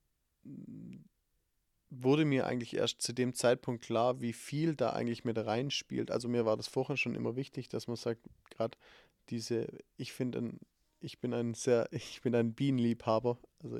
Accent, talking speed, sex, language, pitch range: German, 165 wpm, male, German, 115-130 Hz